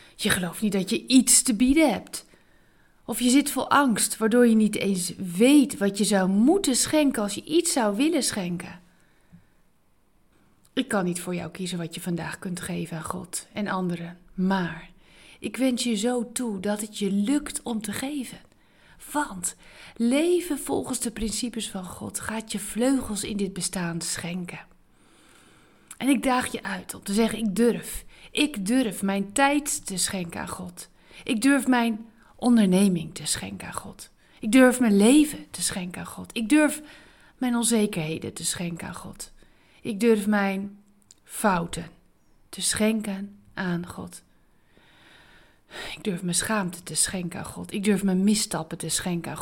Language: Dutch